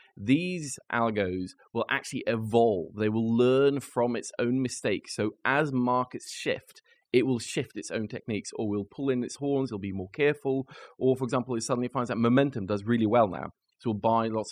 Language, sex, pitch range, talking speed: English, male, 105-130 Hz, 200 wpm